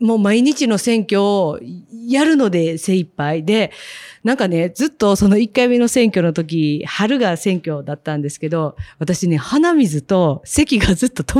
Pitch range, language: 165-230 Hz, Japanese